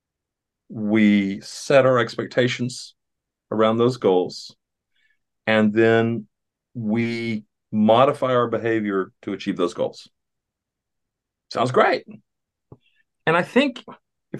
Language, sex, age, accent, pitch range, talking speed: English, male, 50-69, American, 115-155 Hz, 95 wpm